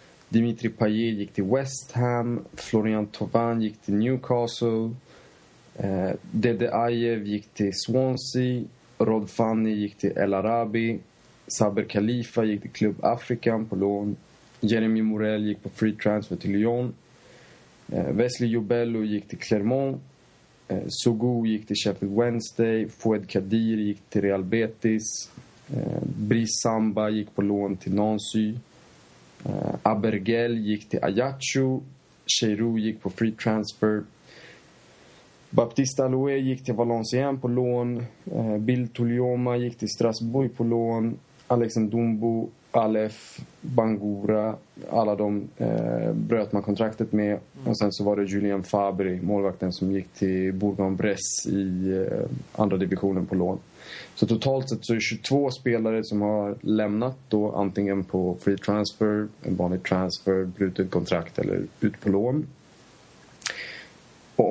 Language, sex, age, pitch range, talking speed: Swedish, male, 20-39, 100-120 Hz, 135 wpm